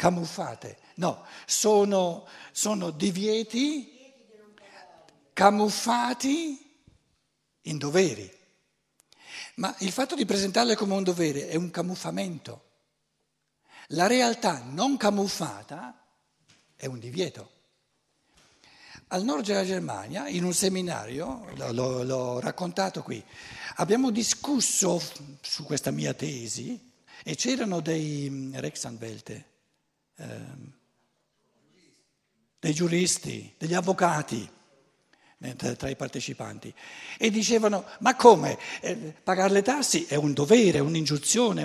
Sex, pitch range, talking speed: male, 160-220 Hz, 90 wpm